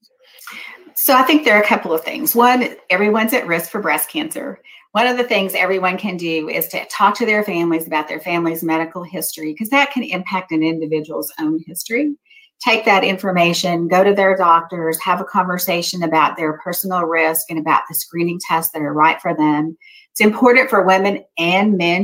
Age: 40-59